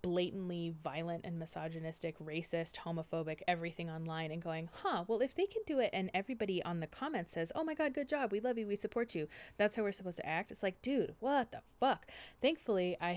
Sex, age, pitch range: female, 20-39, 160-200 Hz